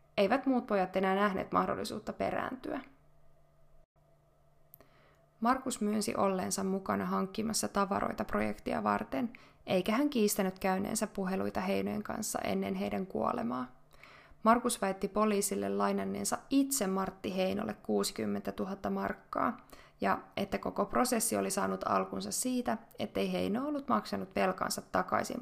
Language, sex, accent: Finnish, female, native